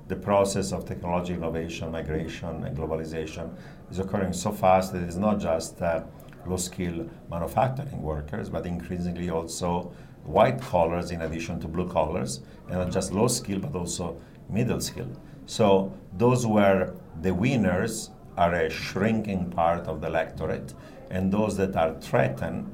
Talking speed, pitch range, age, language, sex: 150 wpm, 80-95 Hz, 50-69, English, male